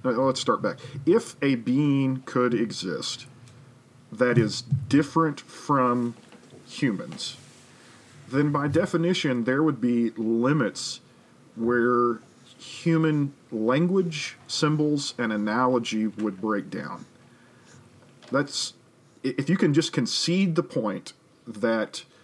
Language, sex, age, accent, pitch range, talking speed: English, male, 40-59, American, 120-150 Hz, 105 wpm